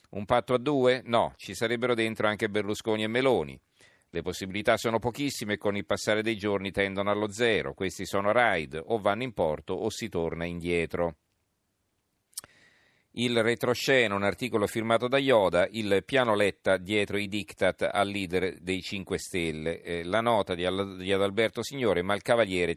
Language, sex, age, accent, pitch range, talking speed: Italian, male, 40-59, native, 90-115 Hz, 165 wpm